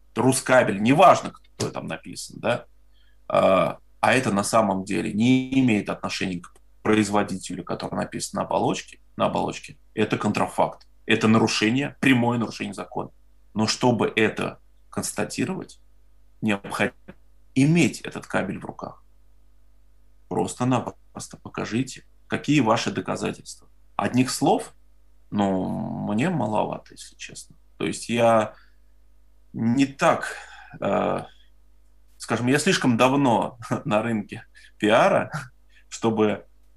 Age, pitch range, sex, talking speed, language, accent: 30-49, 95-115 Hz, male, 105 wpm, Russian, native